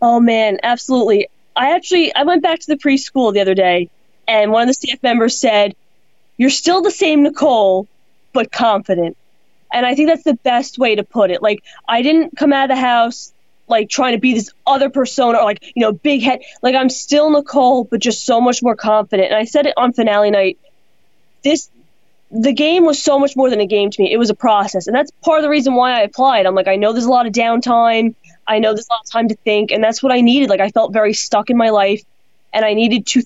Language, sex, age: English, female, 20-39